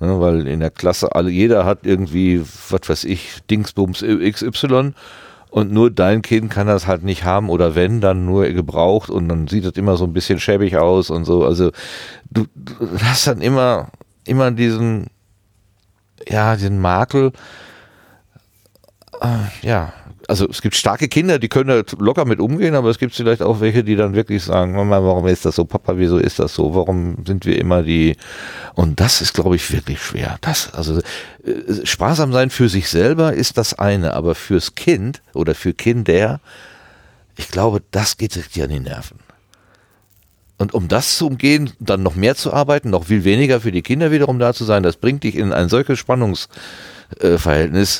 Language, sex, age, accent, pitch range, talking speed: German, male, 40-59, German, 90-120 Hz, 180 wpm